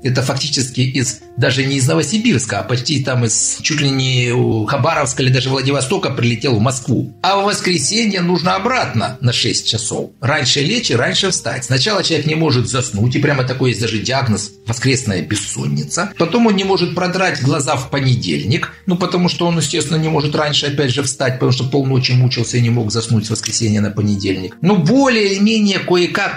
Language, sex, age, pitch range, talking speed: Russian, male, 50-69, 125-180 Hz, 185 wpm